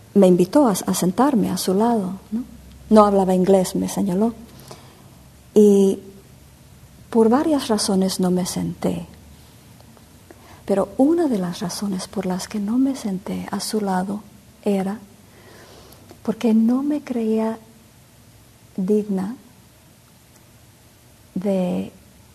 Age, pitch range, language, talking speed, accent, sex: 50-69, 185-215 Hz, English, 110 wpm, American, female